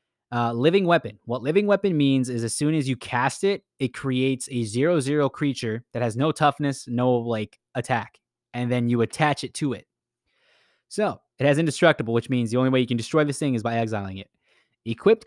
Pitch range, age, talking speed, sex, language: 115-140 Hz, 20-39, 205 wpm, male, English